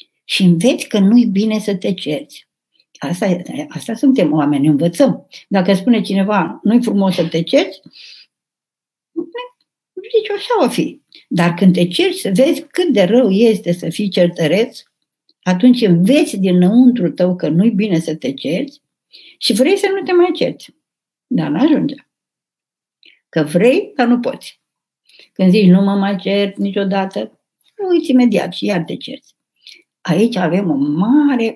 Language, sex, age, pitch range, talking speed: Romanian, female, 60-79, 180-255 Hz, 155 wpm